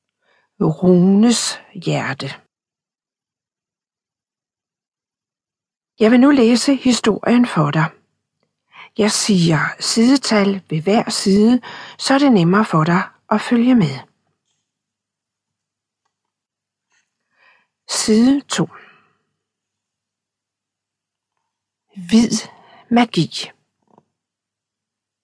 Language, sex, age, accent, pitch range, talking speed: Danish, female, 60-79, native, 160-230 Hz, 70 wpm